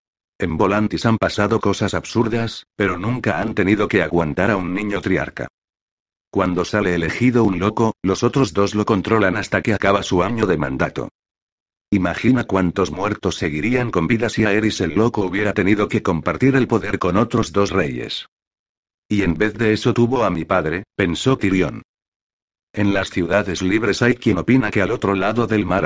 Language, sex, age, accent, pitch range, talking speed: Spanish, male, 60-79, Spanish, 90-115 Hz, 180 wpm